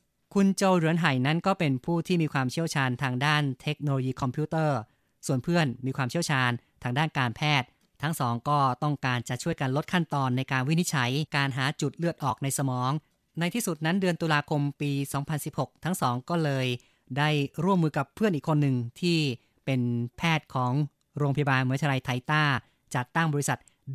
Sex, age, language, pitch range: female, 30-49, Thai, 130-155 Hz